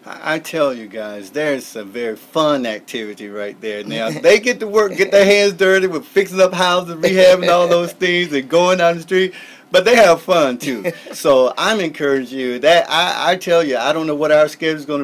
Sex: male